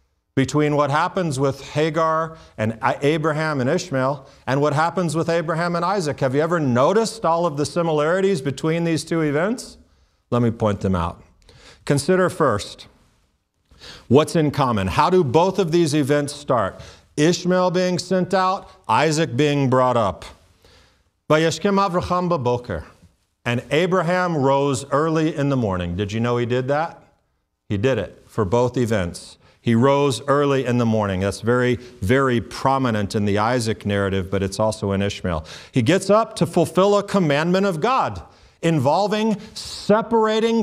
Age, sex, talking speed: 40-59, male, 150 wpm